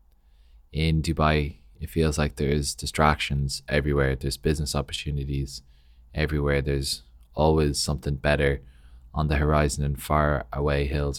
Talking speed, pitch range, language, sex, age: 125 wpm, 65-75 Hz, English, male, 20-39